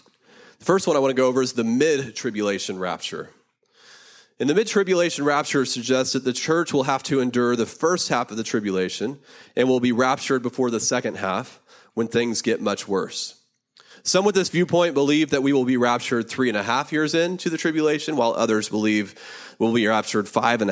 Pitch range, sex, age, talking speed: 115-155 Hz, male, 30-49, 200 wpm